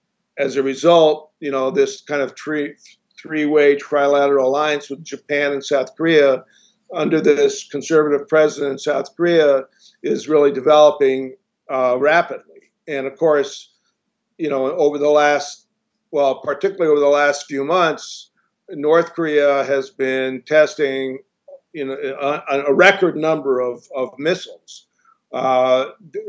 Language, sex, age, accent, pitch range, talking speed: English, male, 50-69, American, 135-170 Hz, 135 wpm